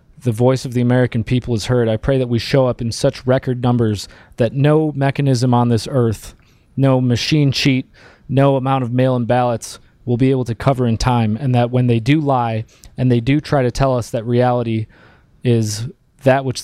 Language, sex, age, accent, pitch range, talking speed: English, male, 30-49, American, 115-135 Hz, 210 wpm